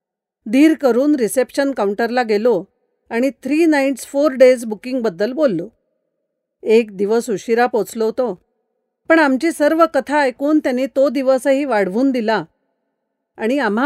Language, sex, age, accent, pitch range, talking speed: Marathi, female, 40-59, native, 215-280 Hz, 115 wpm